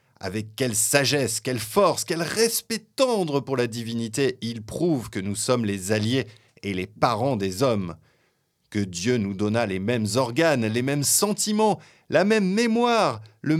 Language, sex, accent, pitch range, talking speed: French, male, French, 110-150 Hz, 165 wpm